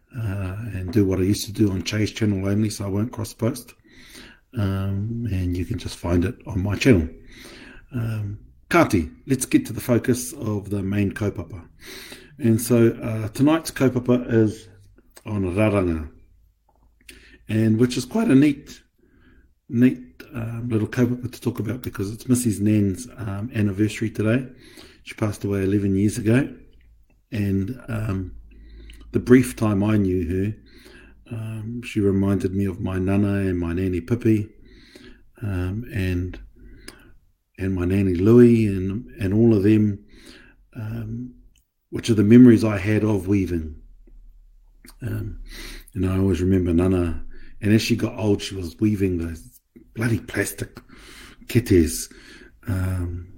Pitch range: 95-115 Hz